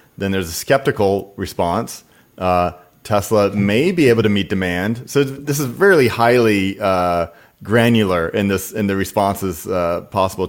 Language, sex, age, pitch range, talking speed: English, male, 30-49, 95-115 Hz, 155 wpm